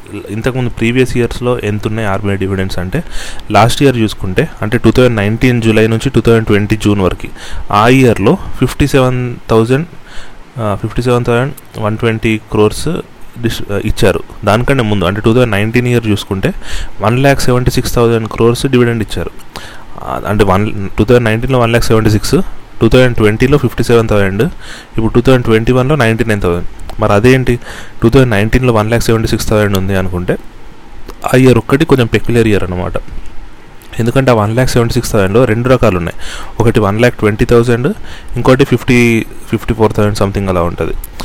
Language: Telugu